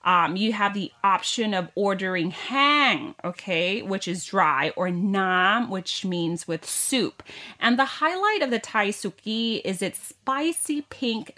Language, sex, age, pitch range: Thai, female, 30-49, 180-240 Hz